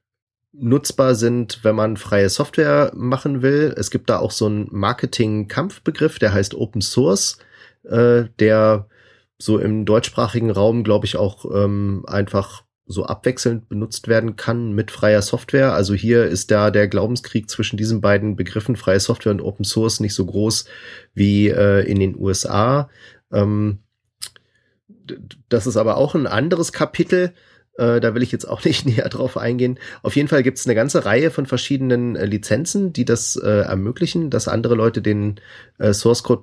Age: 30-49